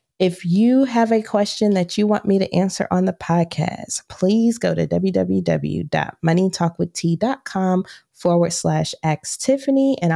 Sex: female